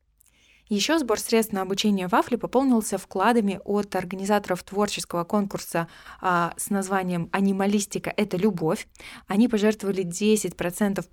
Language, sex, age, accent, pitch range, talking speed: Russian, female, 20-39, native, 175-210 Hz, 115 wpm